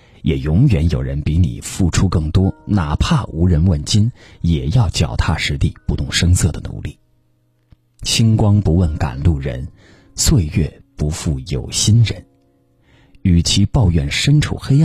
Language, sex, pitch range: Chinese, male, 80-120 Hz